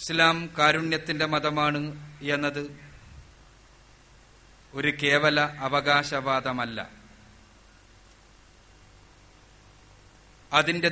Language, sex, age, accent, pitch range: Malayalam, male, 30-49, native, 125-155 Hz